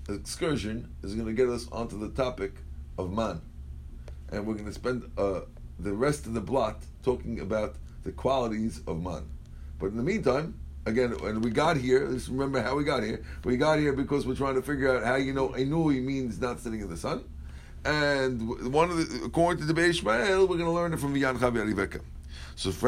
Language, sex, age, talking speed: English, male, 50-69, 205 wpm